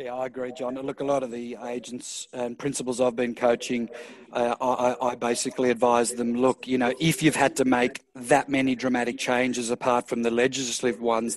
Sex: male